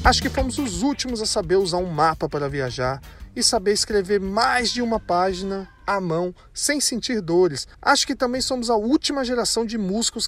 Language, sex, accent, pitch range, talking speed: Portuguese, male, Brazilian, 135-215 Hz, 195 wpm